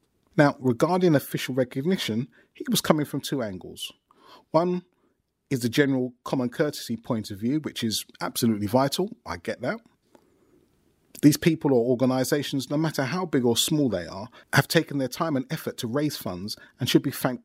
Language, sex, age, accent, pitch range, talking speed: English, male, 30-49, British, 120-150 Hz, 175 wpm